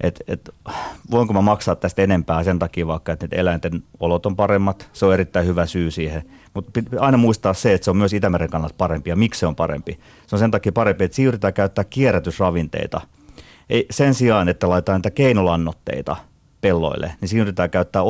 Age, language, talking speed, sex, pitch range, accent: 30-49, Finnish, 180 wpm, male, 80-100 Hz, native